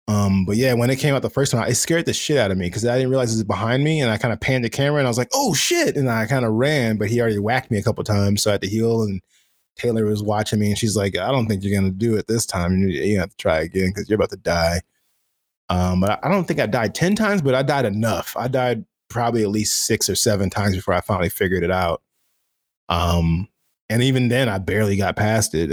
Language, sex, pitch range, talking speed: English, male, 100-135 Hz, 285 wpm